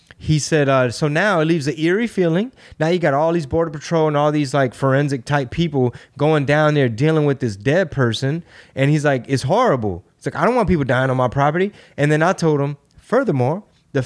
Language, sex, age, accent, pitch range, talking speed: English, male, 20-39, American, 140-200 Hz, 230 wpm